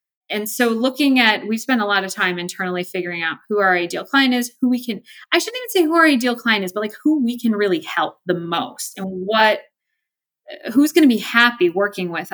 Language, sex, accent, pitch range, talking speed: English, female, American, 180-255 Hz, 235 wpm